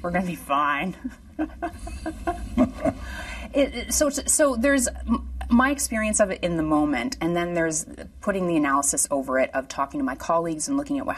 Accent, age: American, 30-49